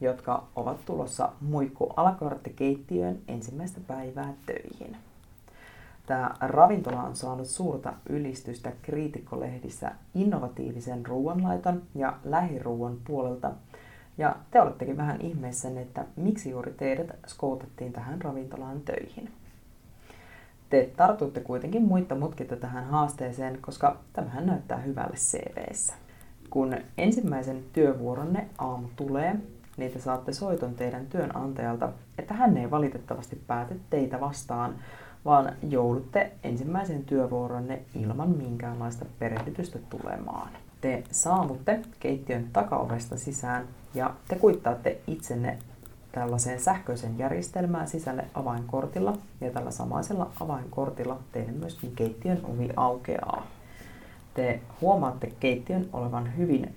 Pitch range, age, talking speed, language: 120-150 Hz, 30-49, 105 wpm, Finnish